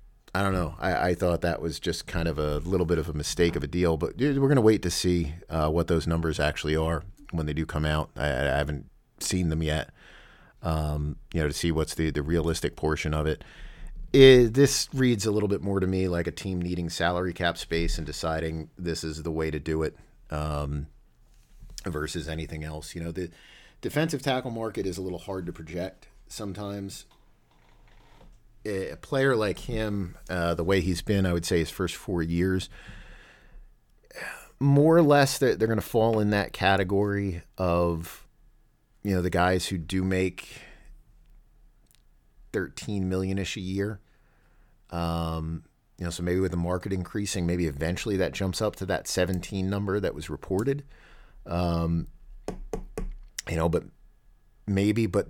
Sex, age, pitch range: male, 30-49, 80-100 Hz